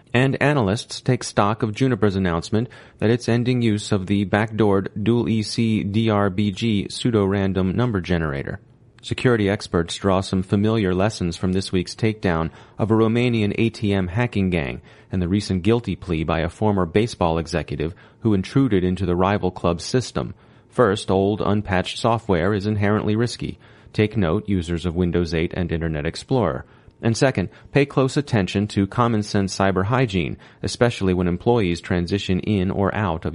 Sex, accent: male, American